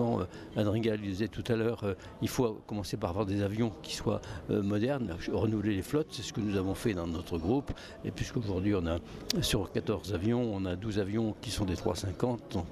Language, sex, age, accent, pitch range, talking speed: French, male, 60-79, French, 105-125 Hz, 215 wpm